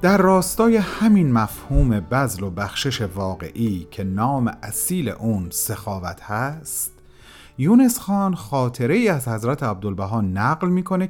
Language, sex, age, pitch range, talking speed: Persian, male, 40-59, 100-165 Hz, 120 wpm